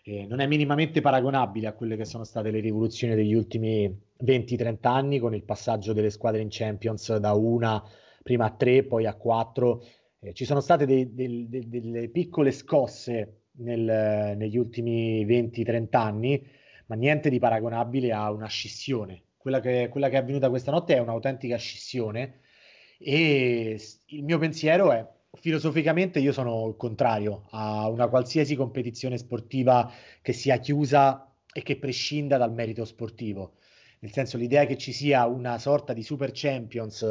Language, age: Italian, 30-49